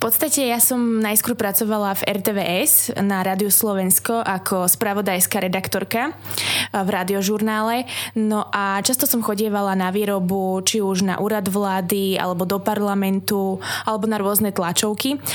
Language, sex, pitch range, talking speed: Slovak, female, 195-220 Hz, 135 wpm